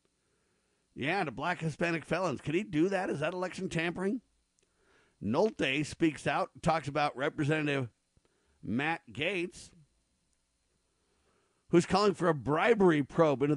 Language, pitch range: English, 125-170 Hz